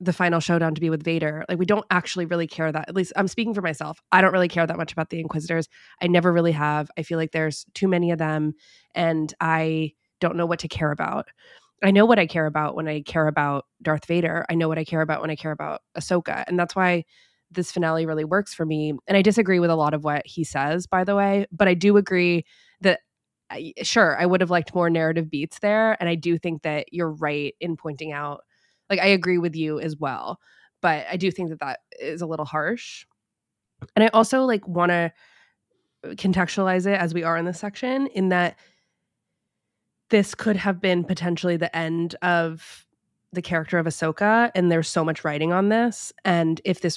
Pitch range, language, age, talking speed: 160-185 Hz, English, 20-39, 220 wpm